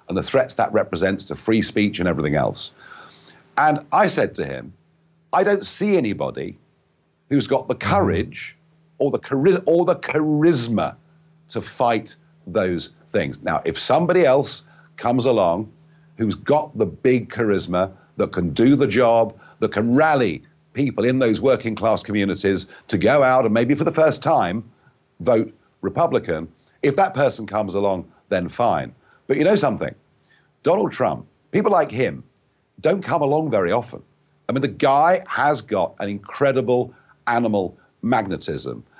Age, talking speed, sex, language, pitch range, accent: 50-69, 150 wpm, male, English, 105-155 Hz, British